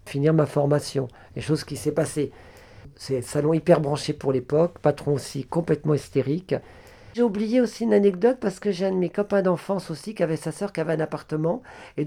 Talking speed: 210 wpm